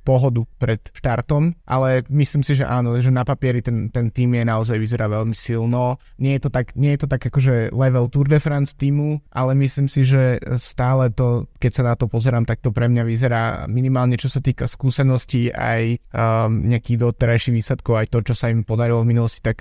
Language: Slovak